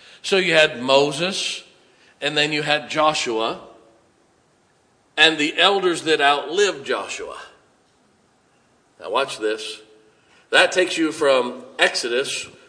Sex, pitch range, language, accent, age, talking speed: male, 130-205 Hz, English, American, 50-69, 110 wpm